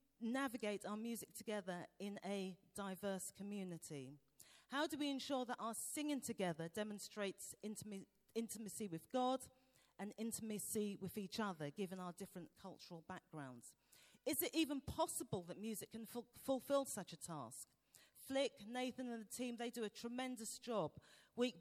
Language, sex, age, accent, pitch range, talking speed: English, female, 40-59, British, 175-235 Hz, 145 wpm